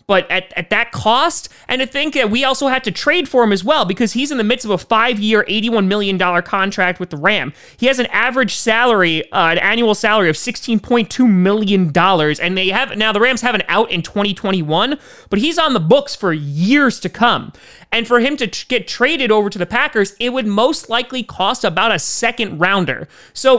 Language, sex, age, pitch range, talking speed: English, male, 30-49, 185-245 Hz, 215 wpm